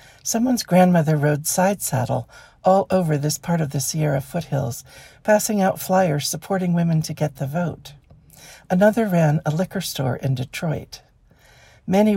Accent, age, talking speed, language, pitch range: American, 60-79, 150 wpm, English, 135-175 Hz